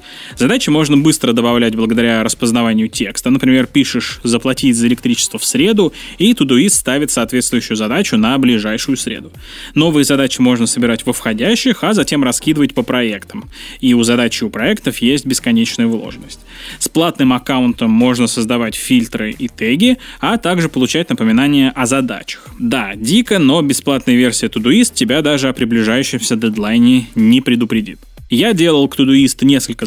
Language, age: Russian, 20-39